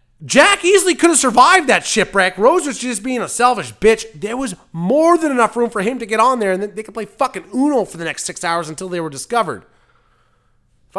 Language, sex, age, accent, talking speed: English, male, 30-49, American, 230 wpm